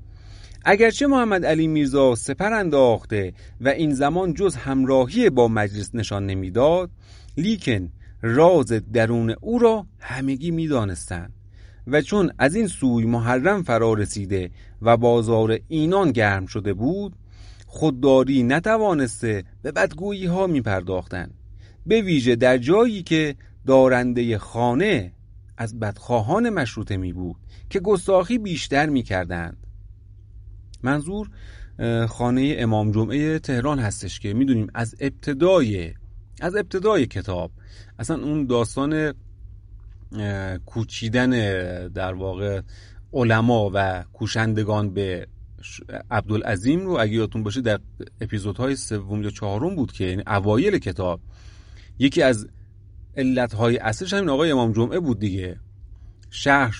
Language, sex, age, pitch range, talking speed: Persian, male, 30-49, 100-140 Hz, 115 wpm